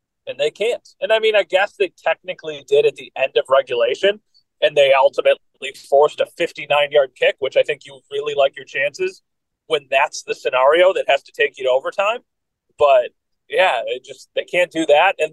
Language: English